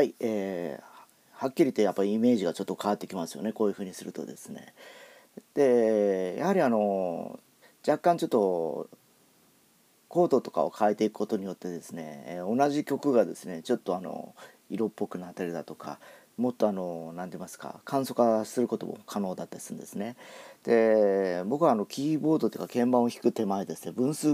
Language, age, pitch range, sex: Japanese, 40-59, 90-120 Hz, male